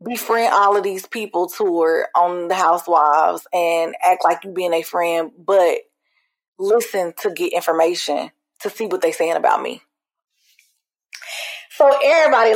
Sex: female